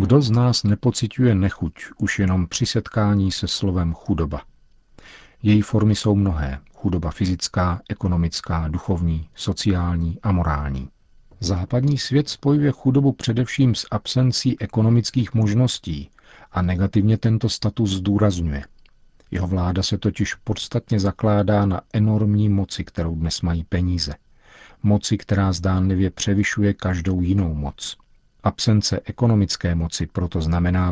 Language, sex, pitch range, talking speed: Czech, male, 90-110 Hz, 120 wpm